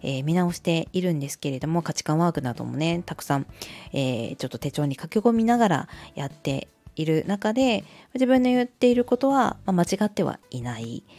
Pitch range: 140-210 Hz